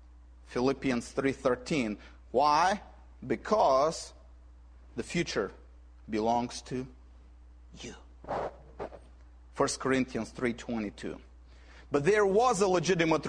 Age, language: 40-59, English